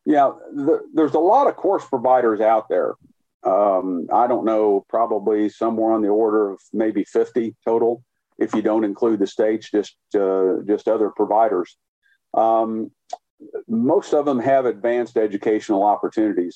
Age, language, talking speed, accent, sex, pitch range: 50-69, English, 150 wpm, American, male, 105-130 Hz